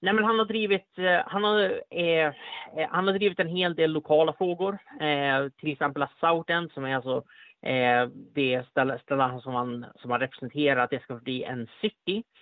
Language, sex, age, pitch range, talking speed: Swedish, male, 30-49, 135-165 Hz, 175 wpm